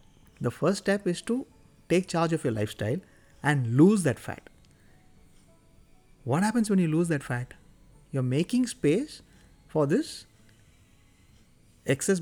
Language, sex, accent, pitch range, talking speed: English, male, Indian, 115-180 Hz, 135 wpm